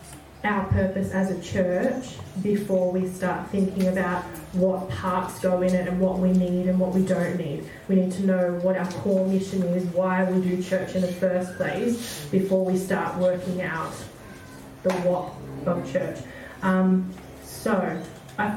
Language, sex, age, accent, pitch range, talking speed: English, female, 20-39, Australian, 180-195 Hz, 170 wpm